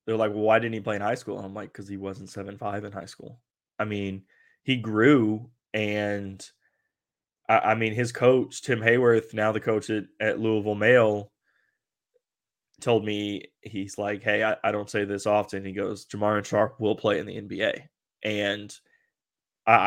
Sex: male